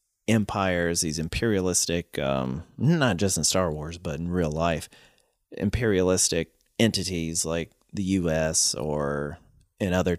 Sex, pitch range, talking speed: male, 85-115 Hz, 125 wpm